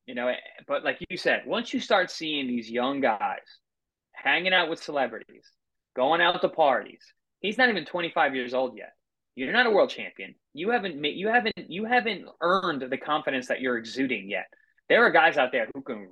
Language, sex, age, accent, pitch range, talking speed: English, male, 20-39, American, 130-180 Hz, 205 wpm